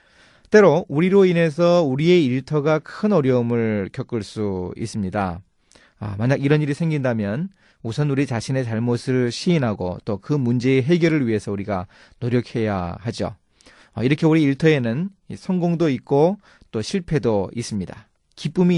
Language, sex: Korean, male